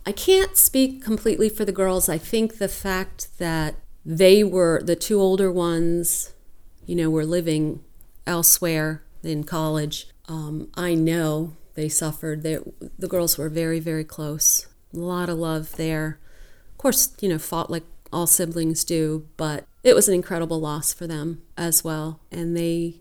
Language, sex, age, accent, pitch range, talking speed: English, female, 40-59, American, 155-175 Hz, 160 wpm